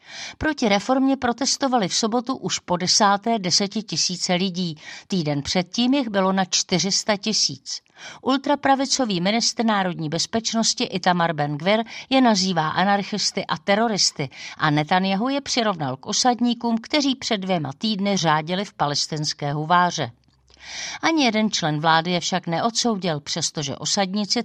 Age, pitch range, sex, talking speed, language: 40-59, 165-230 Hz, female, 130 wpm, Czech